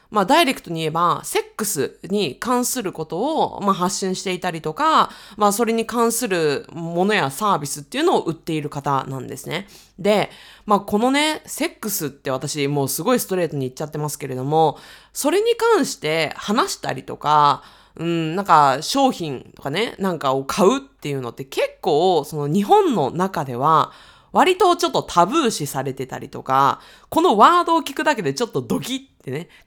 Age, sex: 20-39, female